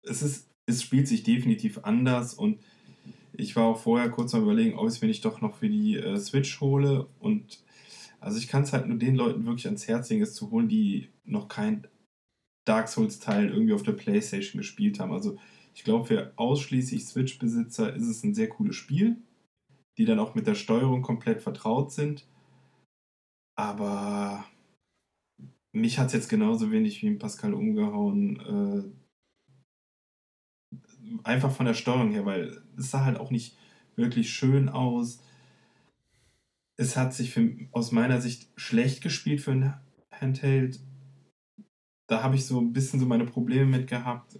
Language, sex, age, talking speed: German, male, 10-29, 165 wpm